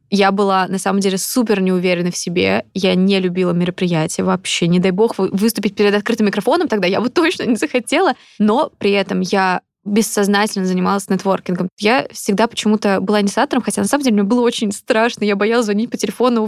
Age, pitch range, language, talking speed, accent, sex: 20-39, 190-225 Hz, Russian, 190 wpm, native, female